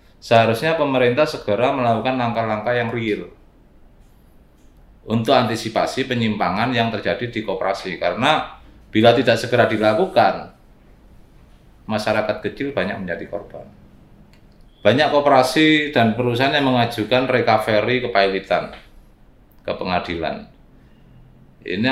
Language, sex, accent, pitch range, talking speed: English, male, Indonesian, 100-125 Hz, 95 wpm